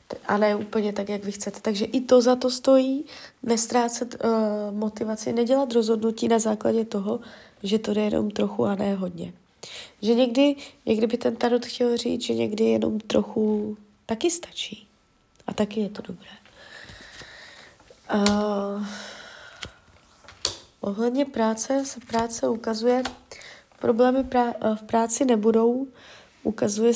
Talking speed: 135 wpm